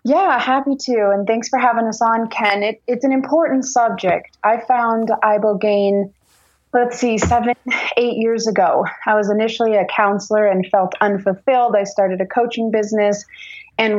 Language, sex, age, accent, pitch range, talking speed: English, female, 30-49, American, 195-230 Hz, 160 wpm